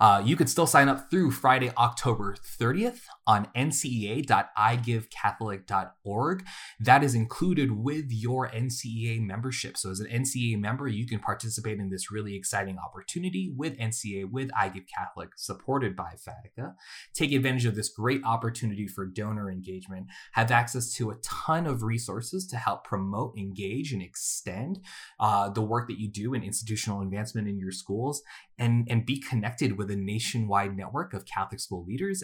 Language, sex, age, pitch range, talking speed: English, male, 20-39, 100-130 Hz, 160 wpm